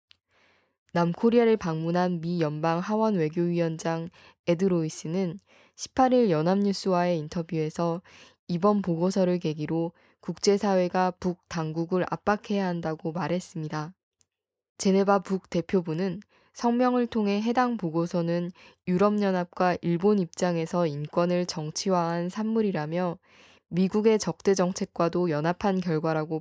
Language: Korean